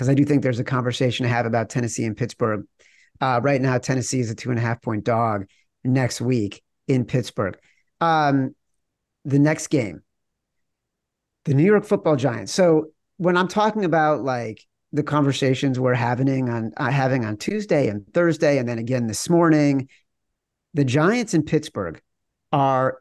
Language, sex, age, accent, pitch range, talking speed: English, male, 40-59, American, 120-155 Hz, 170 wpm